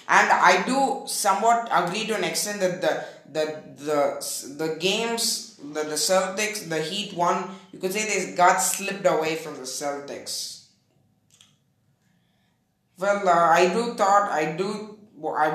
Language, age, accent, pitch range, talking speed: English, 20-39, Indian, 155-225 Hz, 145 wpm